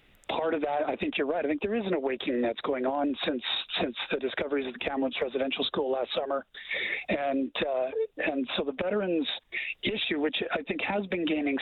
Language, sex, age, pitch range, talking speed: English, male, 40-59, 130-170 Hz, 205 wpm